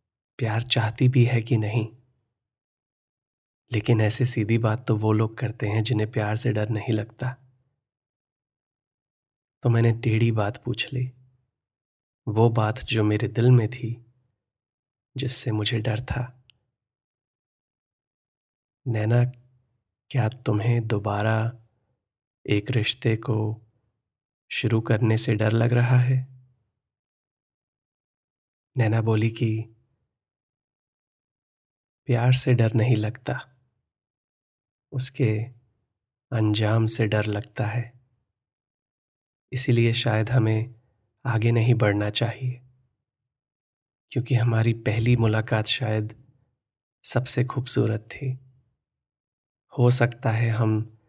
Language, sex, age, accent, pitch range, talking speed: Hindi, male, 20-39, native, 110-125 Hz, 100 wpm